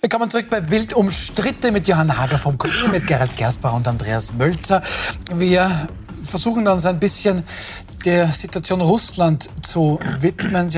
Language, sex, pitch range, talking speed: German, male, 135-170 Hz, 145 wpm